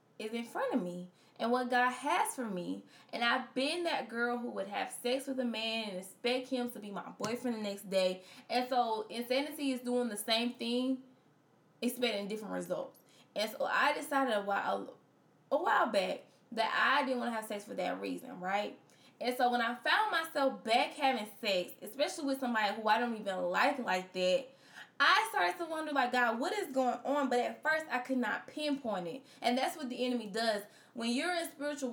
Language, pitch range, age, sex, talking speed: English, 225-280 Hz, 10-29, female, 210 wpm